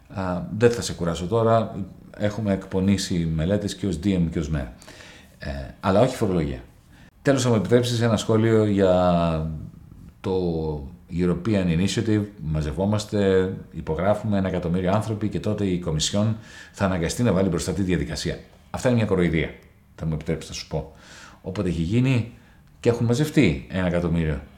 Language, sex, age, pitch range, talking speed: Greek, male, 40-59, 85-115 Hz, 155 wpm